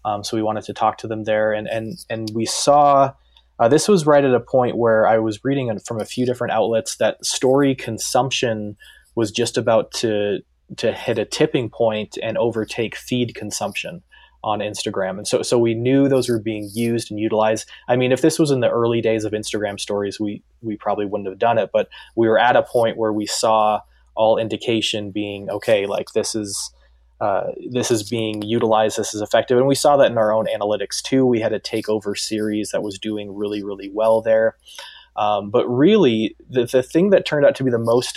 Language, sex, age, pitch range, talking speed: English, male, 20-39, 105-120 Hz, 215 wpm